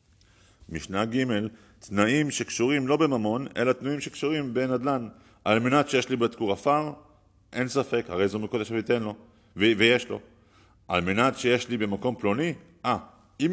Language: Hebrew